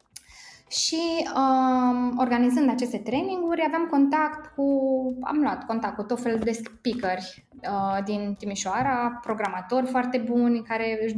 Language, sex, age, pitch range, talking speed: Romanian, female, 20-39, 220-290 Hz, 120 wpm